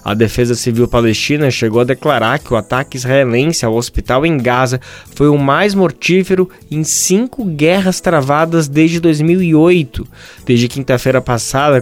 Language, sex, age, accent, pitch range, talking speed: Portuguese, male, 20-39, Brazilian, 120-155 Hz, 140 wpm